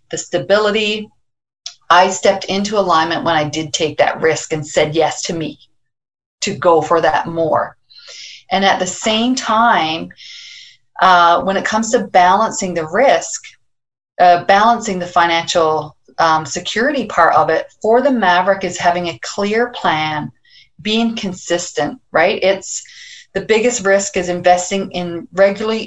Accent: American